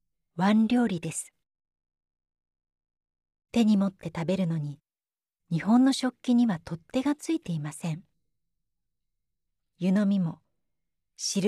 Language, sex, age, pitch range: Japanese, female, 40-59, 160-225 Hz